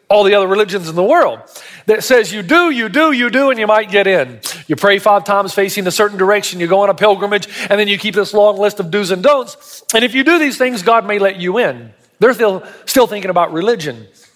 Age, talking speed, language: 40-59, 255 wpm, English